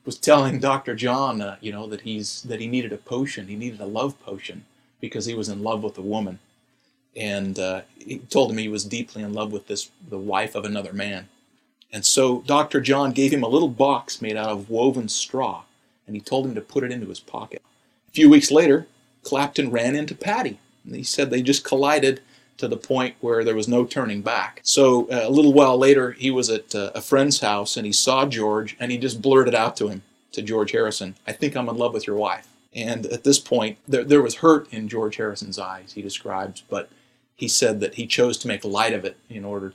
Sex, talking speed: male, 230 wpm